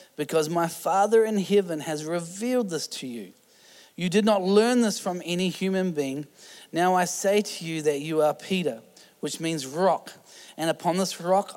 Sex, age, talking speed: male, 30-49, 180 wpm